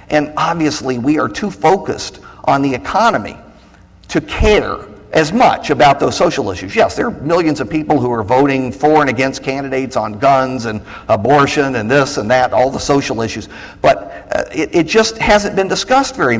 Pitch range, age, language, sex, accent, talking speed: 110-150 Hz, 50-69, English, male, American, 180 wpm